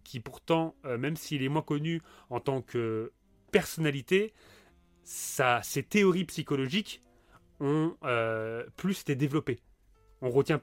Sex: male